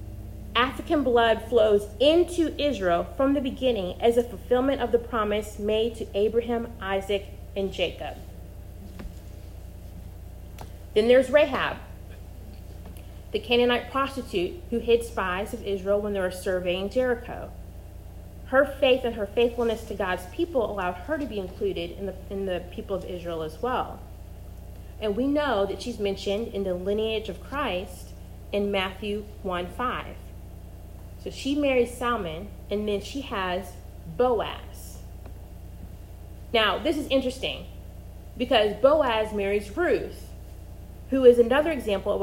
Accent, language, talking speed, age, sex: American, English, 130 wpm, 30-49, female